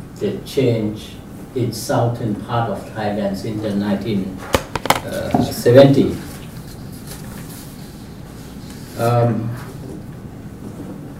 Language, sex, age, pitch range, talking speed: English, male, 60-79, 105-130 Hz, 55 wpm